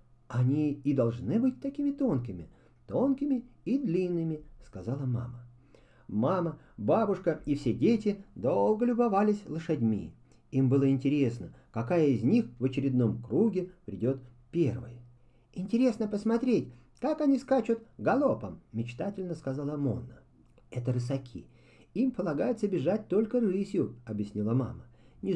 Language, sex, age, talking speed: Russian, male, 40-59, 115 wpm